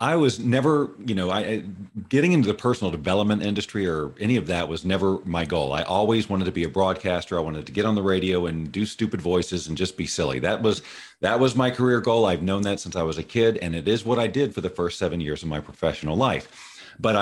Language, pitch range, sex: English, 85-110 Hz, male